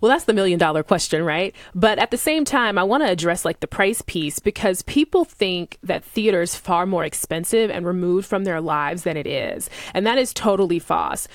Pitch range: 180-225 Hz